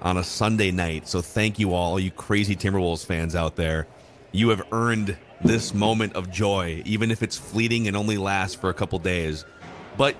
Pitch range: 90-110 Hz